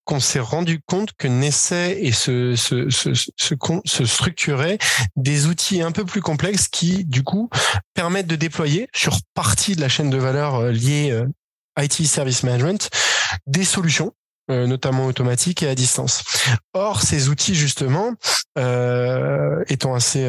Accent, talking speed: French, 150 wpm